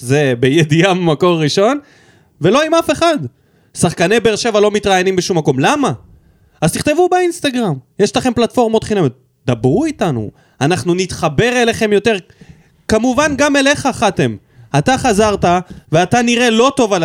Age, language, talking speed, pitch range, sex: 20-39, Hebrew, 140 wpm, 155-255 Hz, male